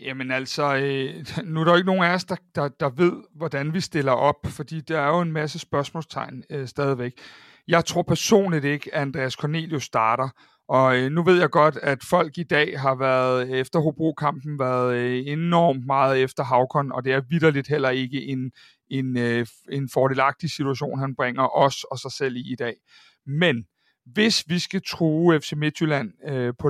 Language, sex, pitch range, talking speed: Danish, male, 135-165 Hz, 175 wpm